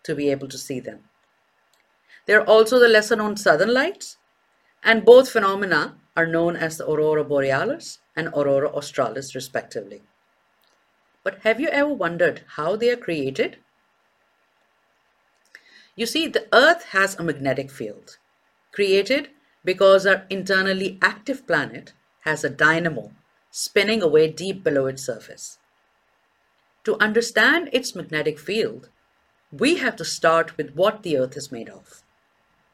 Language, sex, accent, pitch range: English, female, Indian, 160-235 Hz